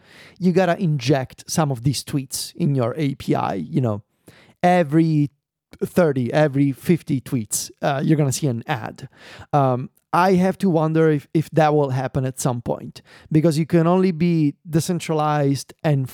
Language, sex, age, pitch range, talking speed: English, male, 30-49, 145-185 Hz, 165 wpm